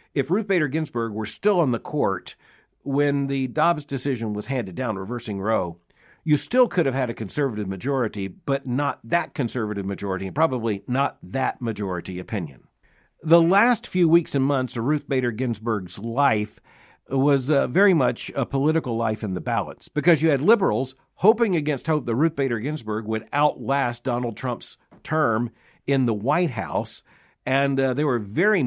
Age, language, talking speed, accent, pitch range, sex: 50-69, English, 175 wpm, American, 115-150 Hz, male